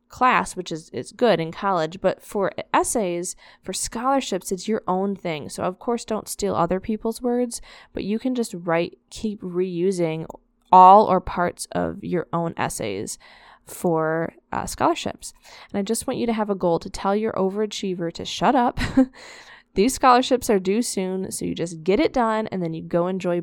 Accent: American